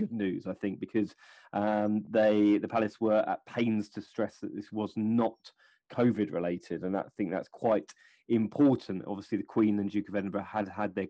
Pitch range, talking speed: 105-125 Hz, 200 wpm